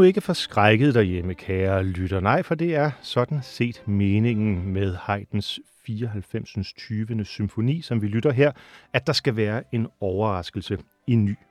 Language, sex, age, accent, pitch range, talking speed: Danish, male, 40-59, native, 100-145 Hz, 150 wpm